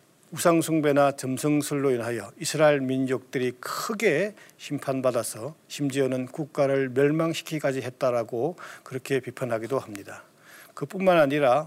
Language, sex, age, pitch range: Korean, male, 50-69, 130-155 Hz